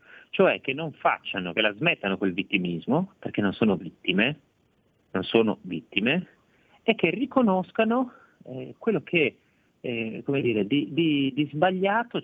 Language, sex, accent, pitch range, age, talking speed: Italian, male, native, 105-170 Hz, 40-59, 140 wpm